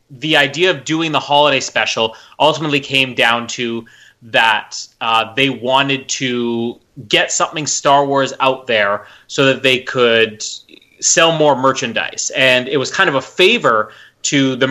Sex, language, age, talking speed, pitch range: male, English, 30-49, 155 wpm, 120-140 Hz